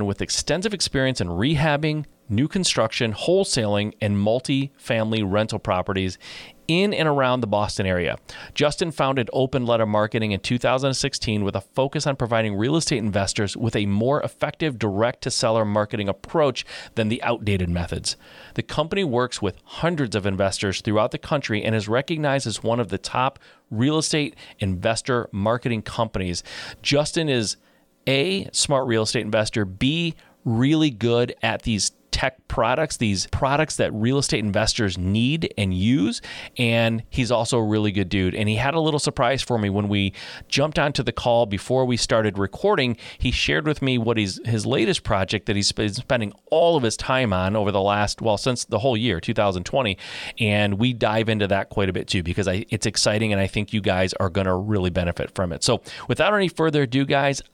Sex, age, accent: male, 30-49, American